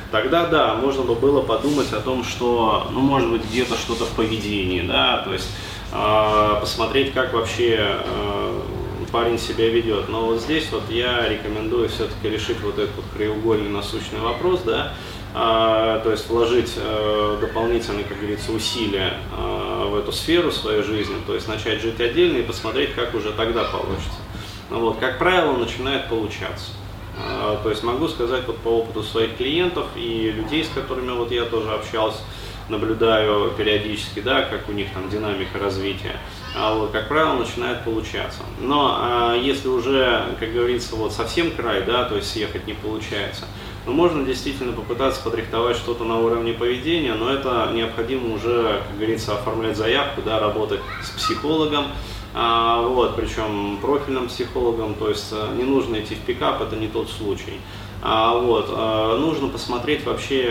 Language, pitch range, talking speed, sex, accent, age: Russian, 105-120 Hz, 155 wpm, male, native, 20-39